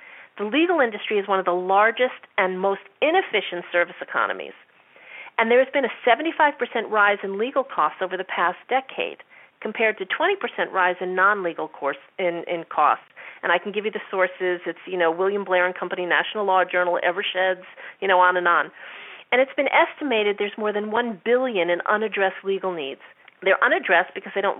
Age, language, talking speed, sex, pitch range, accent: 40-59, English, 190 wpm, female, 190-260 Hz, American